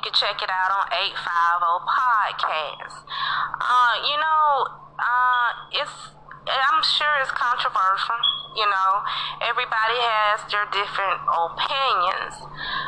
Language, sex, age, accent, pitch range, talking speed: English, female, 20-39, American, 190-235 Hz, 110 wpm